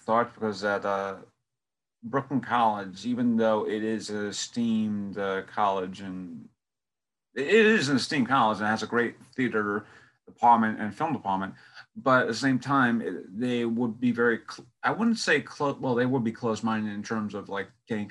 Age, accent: 30-49, American